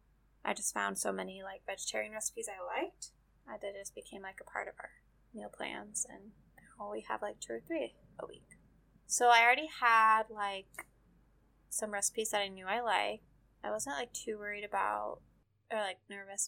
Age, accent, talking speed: 20-39, American, 185 wpm